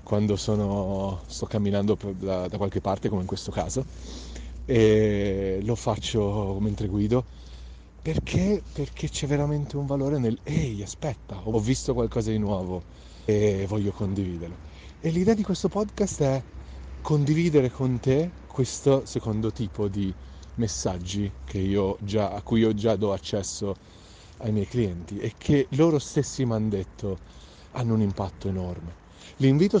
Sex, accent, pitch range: male, native, 100-140 Hz